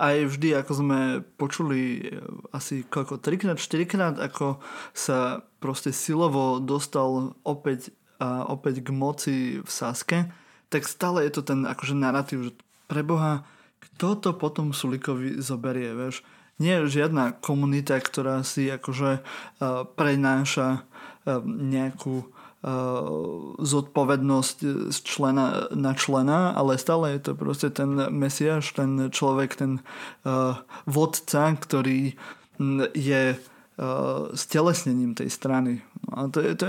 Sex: male